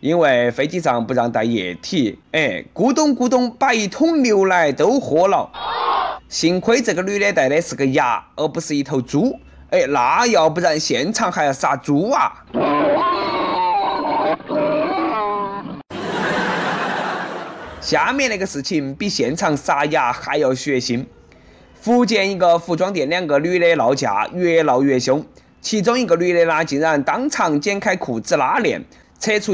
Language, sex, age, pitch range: Chinese, male, 20-39, 145-210 Hz